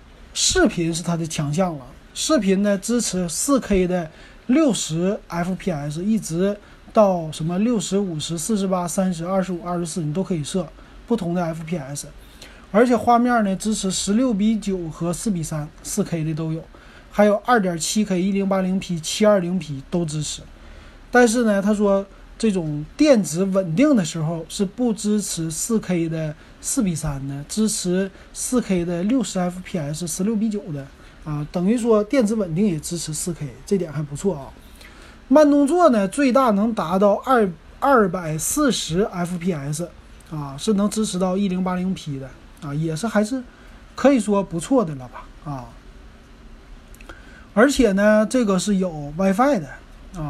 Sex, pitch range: male, 165-215 Hz